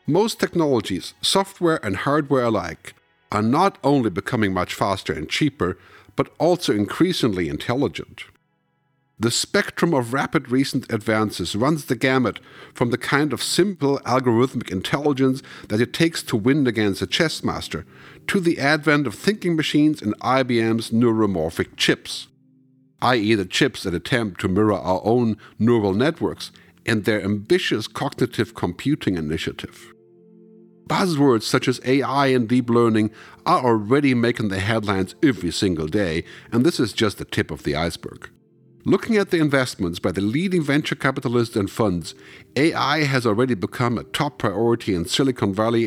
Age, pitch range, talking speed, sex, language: 50-69, 105-140 Hz, 150 wpm, male, English